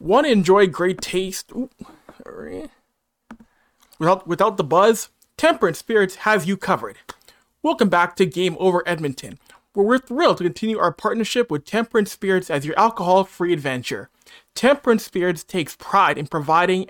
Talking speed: 140 wpm